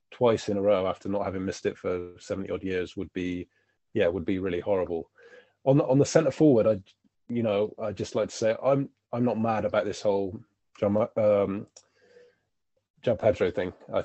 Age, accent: 20-39, British